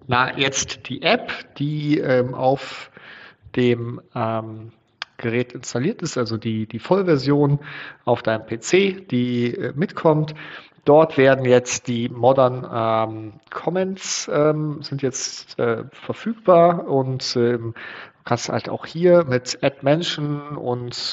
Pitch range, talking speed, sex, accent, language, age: 120-145 Hz, 130 wpm, male, German, German, 40-59